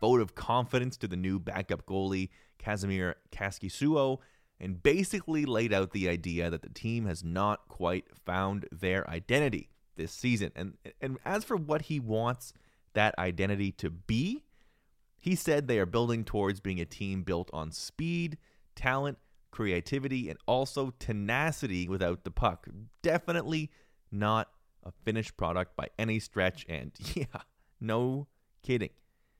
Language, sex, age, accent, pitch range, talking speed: English, male, 30-49, American, 95-130 Hz, 145 wpm